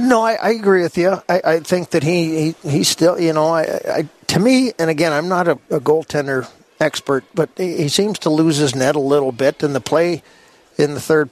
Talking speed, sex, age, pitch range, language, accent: 240 wpm, male, 50-69, 140-160 Hz, English, American